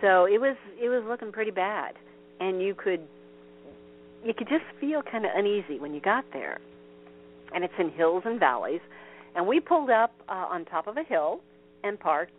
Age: 50-69